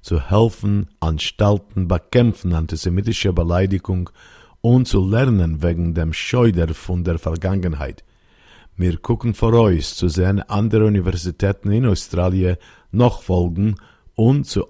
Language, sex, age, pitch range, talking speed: Hebrew, male, 50-69, 85-105 Hz, 120 wpm